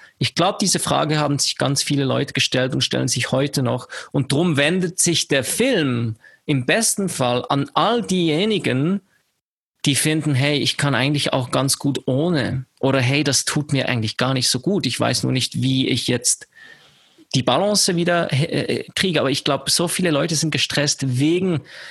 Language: German